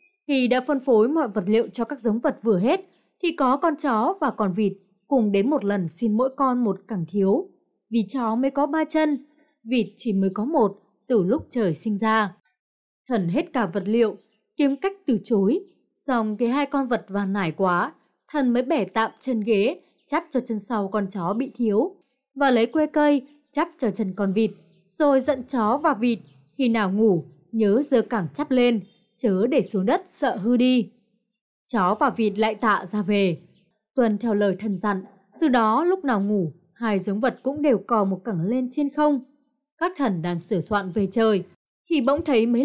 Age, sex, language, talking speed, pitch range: 20-39, female, Vietnamese, 205 wpm, 210-275 Hz